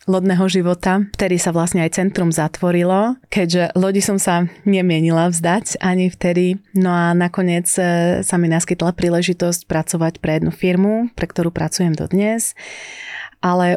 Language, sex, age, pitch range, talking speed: Slovak, female, 30-49, 170-195 Hz, 140 wpm